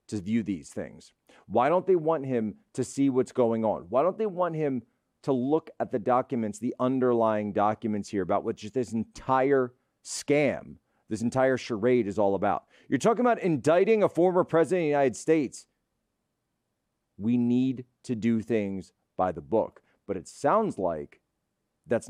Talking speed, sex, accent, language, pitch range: 175 wpm, male, American, English, 110-135 Hz